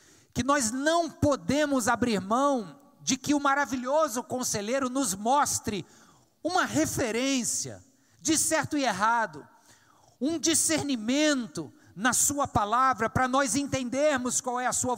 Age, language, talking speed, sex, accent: 50-69, Portuguese, 125 wpm, male, Brazilian